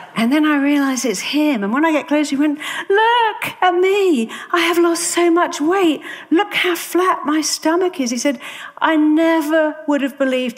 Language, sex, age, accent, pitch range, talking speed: English, female, 50-69, British, 190-315 Hz, 200 wpm